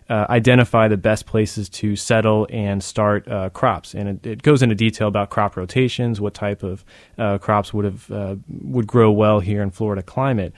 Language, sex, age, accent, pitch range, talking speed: English, male, 20-39, American, 105-120 Hz, 200 wpm